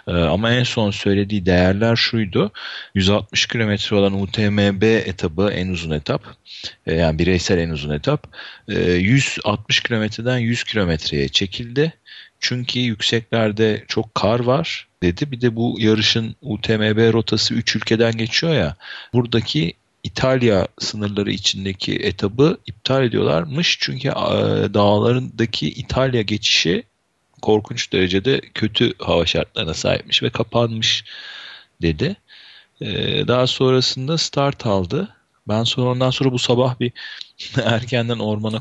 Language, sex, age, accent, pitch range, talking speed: Turkish, male, 40-59, native, 105-125 Hz, 115 wpm